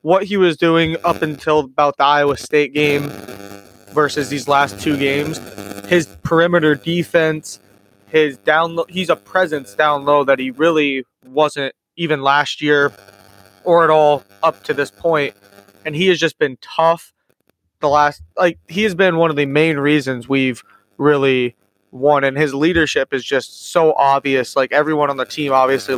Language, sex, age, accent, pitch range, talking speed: English, male, 20-39, American, 130-155 Hz, 170 wpm